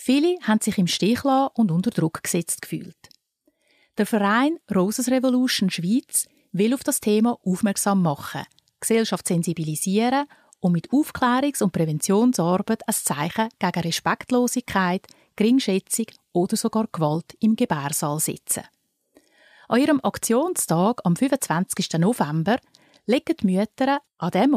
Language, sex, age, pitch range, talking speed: German, female, 30-49, 180-260 Hz, 125 wpm